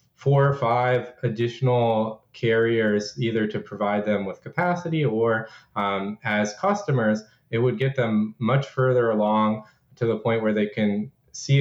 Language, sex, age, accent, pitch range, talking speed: English, male, 20-39, American, 110-135 Hz, 150 wpm